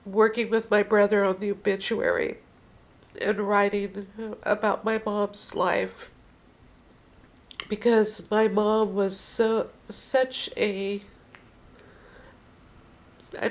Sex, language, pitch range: female, English, 195-225 Hz